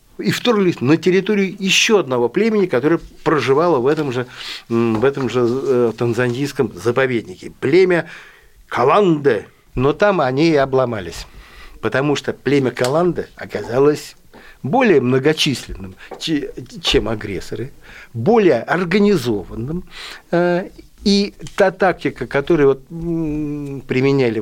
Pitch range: 120-185 Hz